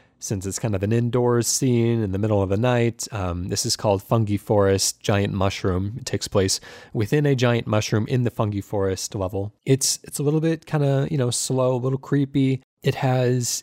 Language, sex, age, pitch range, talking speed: English, male, 20-39, 105-135 Hz, 210 wpm